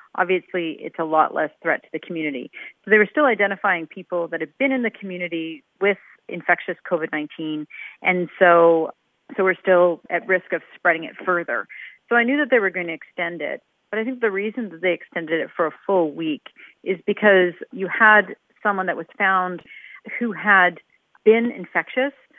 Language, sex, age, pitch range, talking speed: English, female, 40-59, 165-210 Hz, 190 wpm